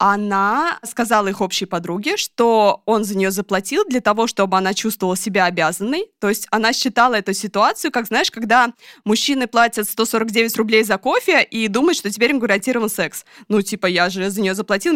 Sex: female